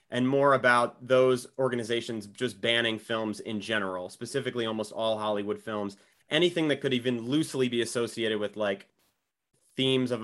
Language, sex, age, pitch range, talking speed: English, male, 30-49, 115-140 Hz, 150 wpm